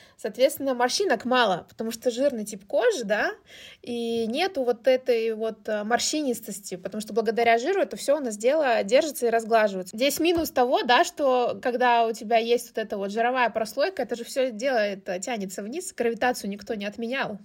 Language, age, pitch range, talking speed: Russian, 20-39, 220-275 Hz, 175 wpm